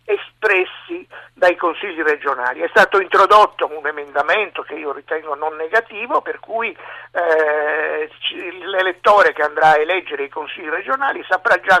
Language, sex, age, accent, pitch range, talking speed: Italian, male, 50-69, native, 165-275 Hz, 135 wpm